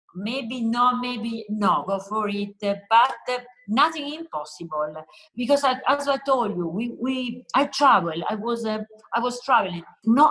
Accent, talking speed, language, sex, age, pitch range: Italian, 165 wpm, English, female, 50-69, 200-260 Hz